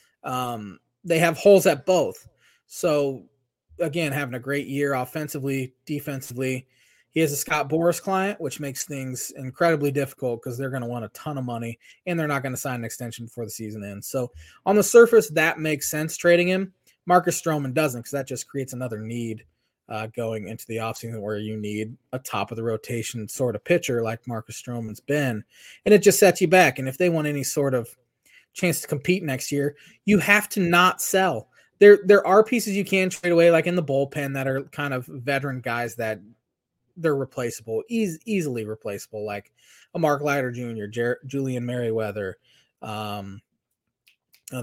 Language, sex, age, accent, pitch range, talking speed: English, male, 20-39, American, 115-165 Hz, 190 wpm